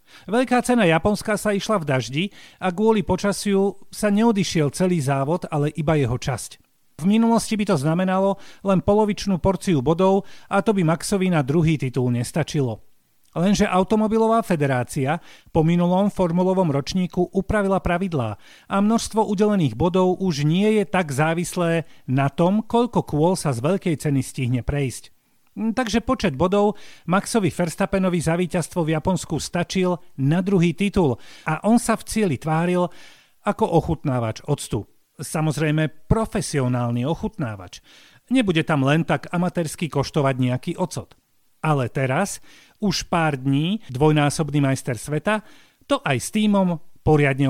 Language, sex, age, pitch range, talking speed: Slovak, male, 40-59, 145-195 Hz, 140 wpm